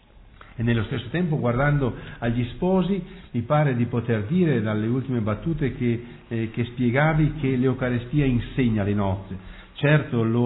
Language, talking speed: Italian, 150 wpm